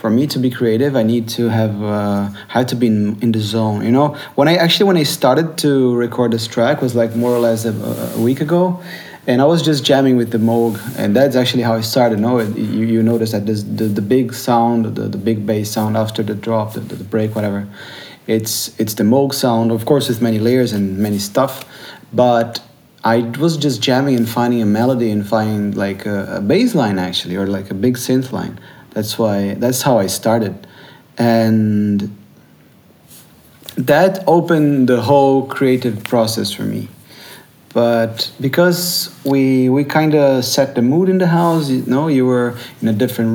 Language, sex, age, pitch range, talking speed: English, male, 30-49, 110-130 Hz, 200 wpm